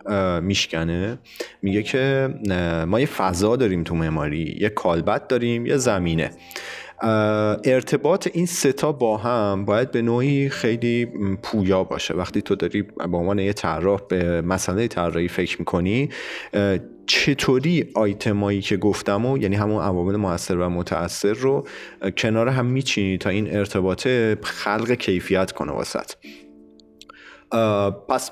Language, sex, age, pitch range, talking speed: Persian, male, 30-49, 90-115 Hz, 125 wpm